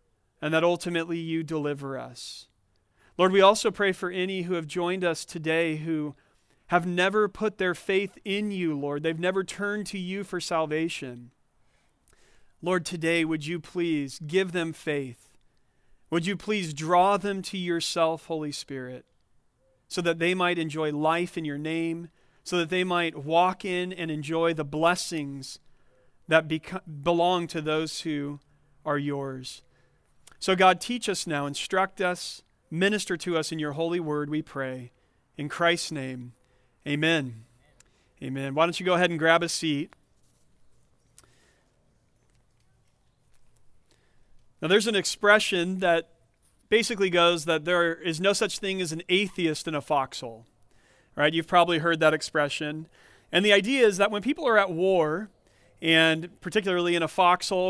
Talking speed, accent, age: 150 wpm, American, 40-59